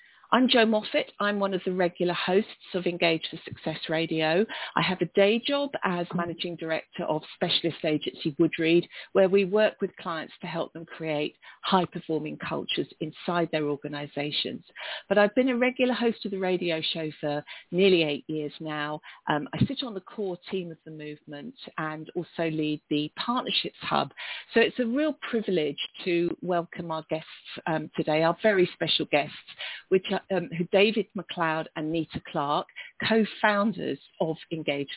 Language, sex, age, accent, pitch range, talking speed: English, female, 40-59, British, 155-210 Hz, 170 wpm